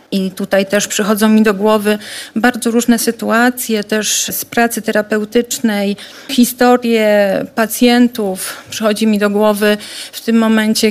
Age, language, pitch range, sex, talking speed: 40-59, Polish, 210-240 Hz, female, 125 wpm